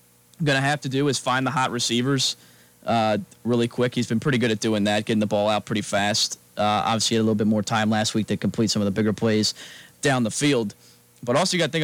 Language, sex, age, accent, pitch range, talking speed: English, male, 20-39, American, 105-125 Hz, 255 wpm